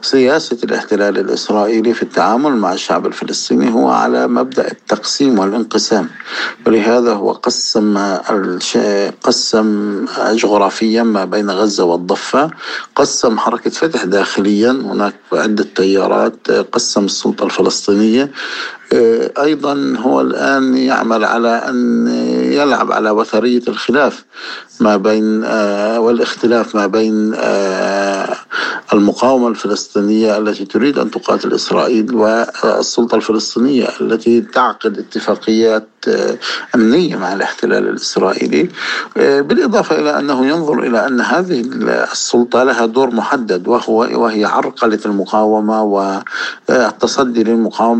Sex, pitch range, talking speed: male, 105-115 Hz, 100 wpm